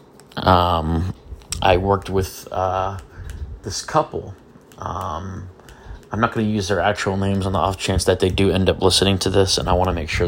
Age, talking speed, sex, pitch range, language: 30-49, 200 wpm, male, 90-110 Hz, English